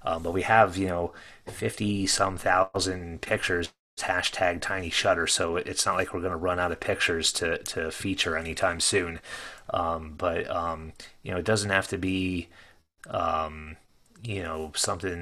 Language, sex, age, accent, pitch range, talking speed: English, male, 30-49, American, 85-100 Hz, 170 wpm